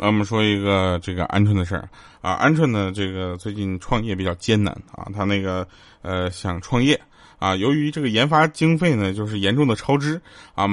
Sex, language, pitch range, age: male, Chinese, 100-155 Hz, 20-39